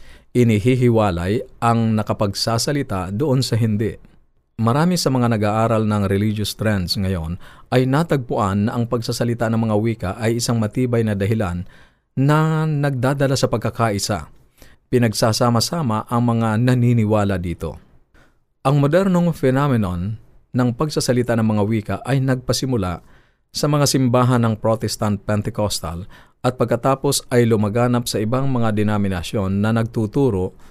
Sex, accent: male, native